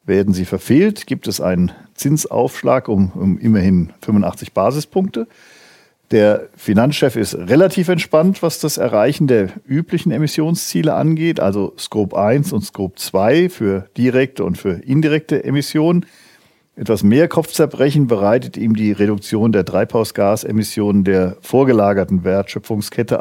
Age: 50-69